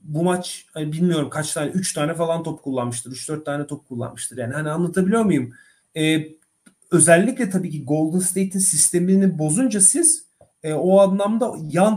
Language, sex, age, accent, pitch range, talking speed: Turkish, male, 40-59, native, 155-200 Hz, 160 wpm